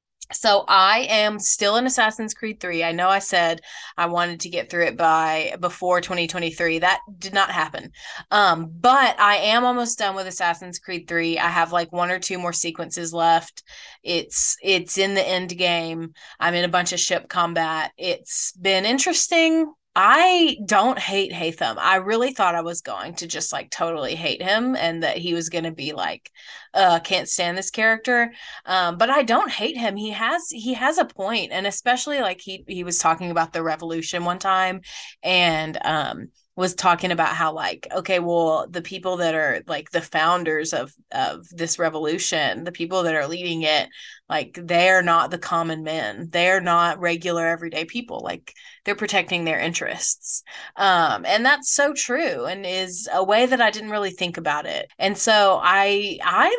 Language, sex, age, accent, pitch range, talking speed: English, female, 20-39, American, 170-205 Hz, 190 wpm